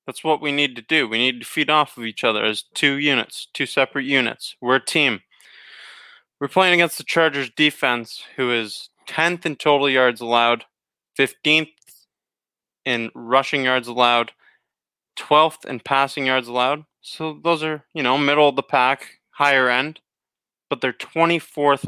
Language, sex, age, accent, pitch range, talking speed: English, male, 20-39, American, 120-145 Hz, 165 wpm